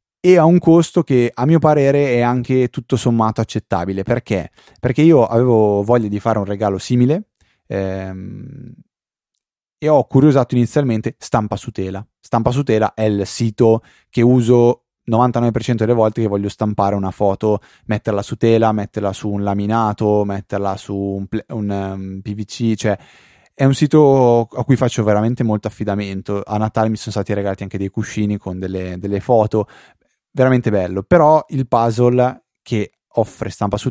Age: 20-39